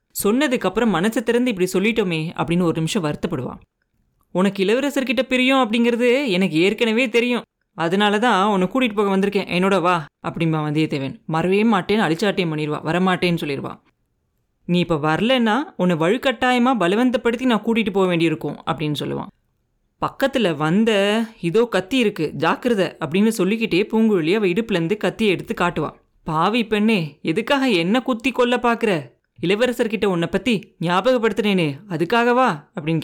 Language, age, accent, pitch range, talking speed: Tamil, 30-49, native, 170-225 Hz, 125 wpm